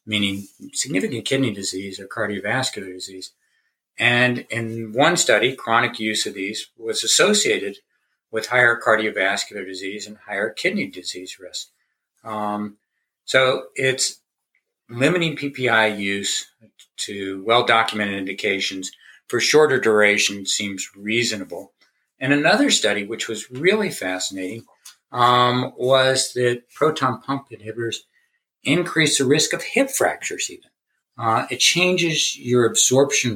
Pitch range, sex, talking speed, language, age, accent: 105-135 Hz, male, 115 wpm, English, 50-69, American